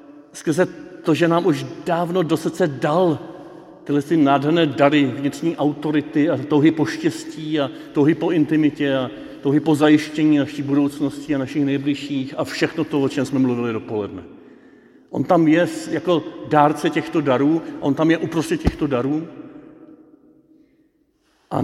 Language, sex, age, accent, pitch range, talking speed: Czech, male, 50-69, native, 145-185 Hz, 145 wpm